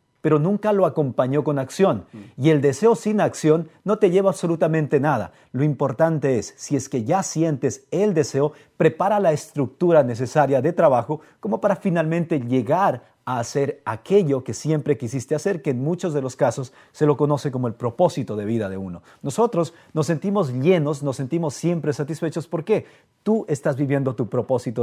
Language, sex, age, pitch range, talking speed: English, male, 40-59, 135-170 Hz, 175 wpm